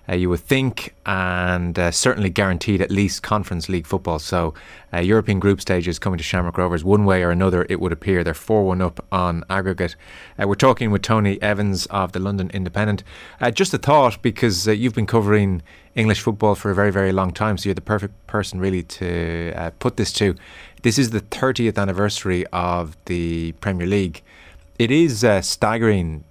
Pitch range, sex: 90-105 Hz, male